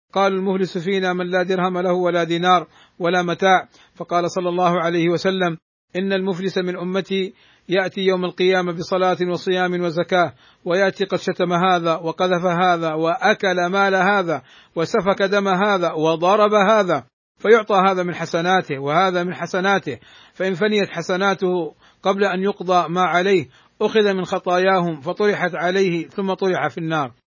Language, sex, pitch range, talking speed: Arabic, male, 180-195 Hz, 140 wpm